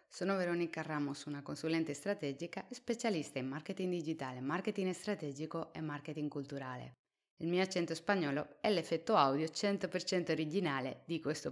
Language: Italian